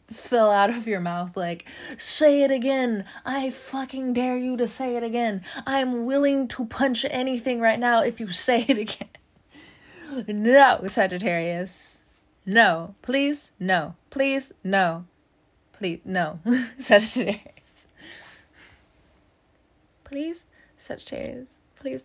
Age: 20-39